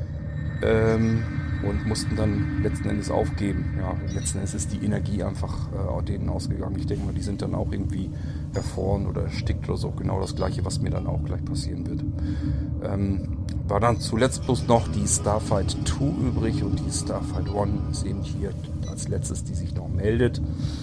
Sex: male